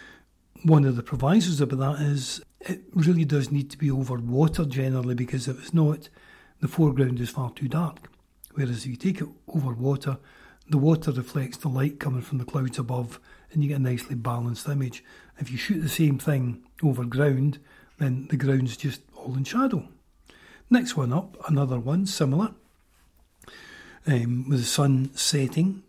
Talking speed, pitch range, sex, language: 175 wpm, 125-155 Hz, male, English